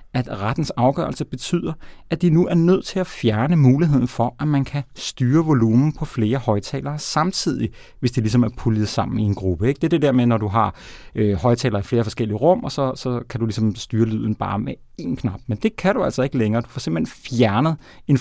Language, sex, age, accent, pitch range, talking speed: Danish, male, 30-49, native, 115-145 Hz, 235 wpm